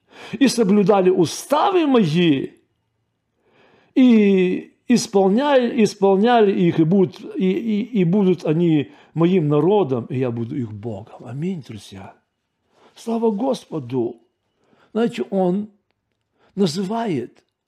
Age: 50-69